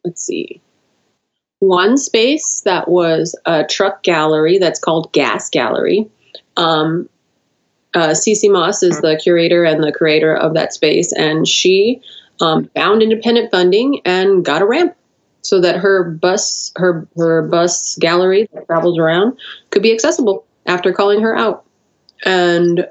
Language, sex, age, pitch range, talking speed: English, female, 20-39, 165-205 Hz, 140 wpm